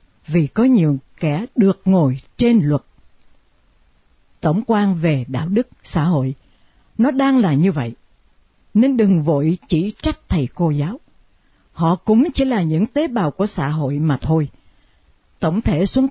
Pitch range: 135-205 Hz